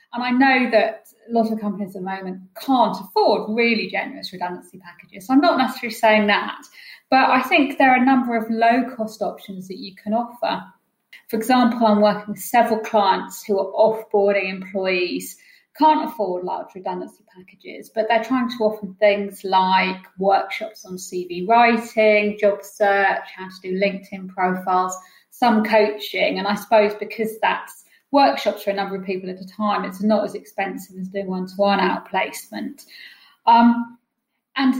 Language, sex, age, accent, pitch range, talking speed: English, female, 30-49, British, 195-235 Hz, 170 wpm